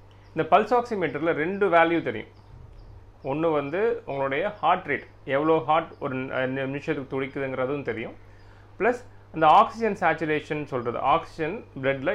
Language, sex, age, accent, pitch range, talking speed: Tamil, male, 30-49, native, 105-165 Hz, 120 wpm